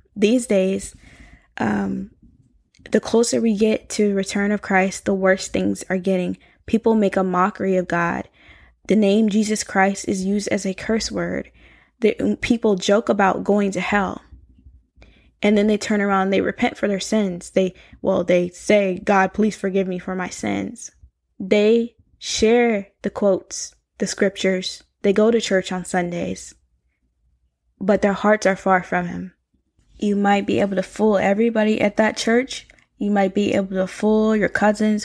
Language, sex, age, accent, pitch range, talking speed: English, female, 10-29, American, 185-215 Hz, 170 wpm